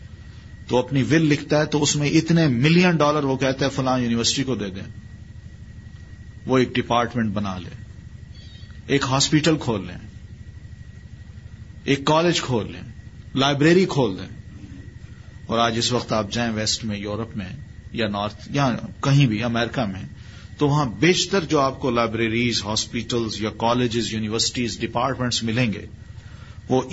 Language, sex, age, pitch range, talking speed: Urdu, male, 40-59, 105-125 Hz, 150 wpm